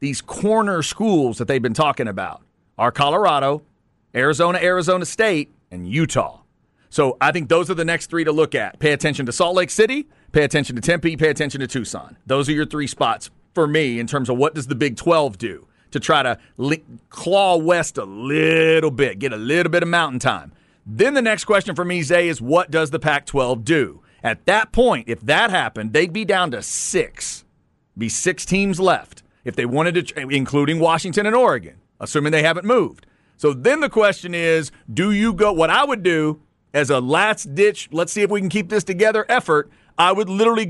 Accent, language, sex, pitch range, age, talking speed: American, English, male, 145-195 Hz, 40-59, 205 wpm